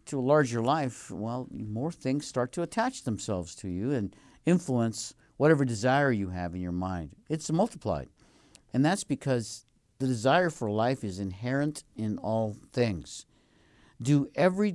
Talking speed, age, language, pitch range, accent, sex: 155 wpm, 50-69, English, 100-135 Hz, American, male